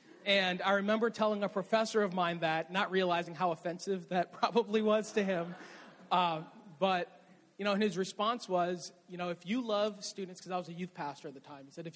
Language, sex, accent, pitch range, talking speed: English, male, American, 180-225 Hz, 215 wpm